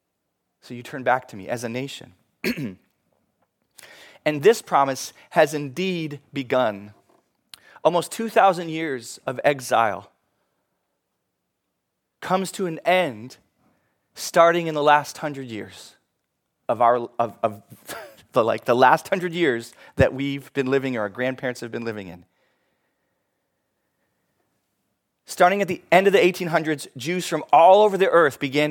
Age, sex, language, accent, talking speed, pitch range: 30-49, male, English, American, 140 wpm, 115-150 Hz